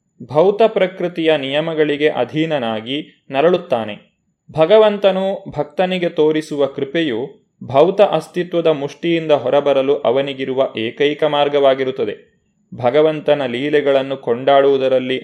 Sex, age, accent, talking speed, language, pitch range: male, 20-39, native, 75 wpm, Kannada, 140-185 Hz